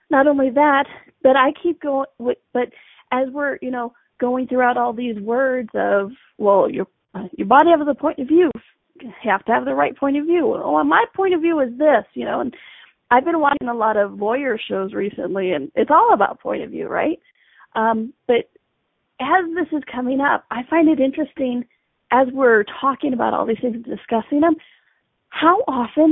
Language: English